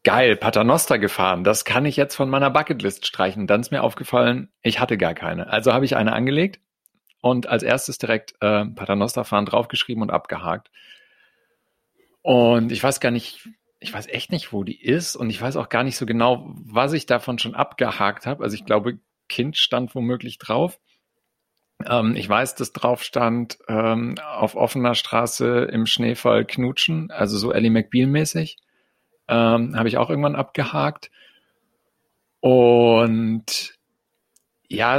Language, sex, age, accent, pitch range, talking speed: German, male, 40-59, German, 115-145 Hz, 160 wpm